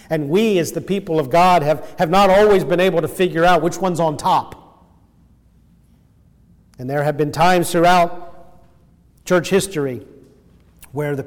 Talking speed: 160 wpm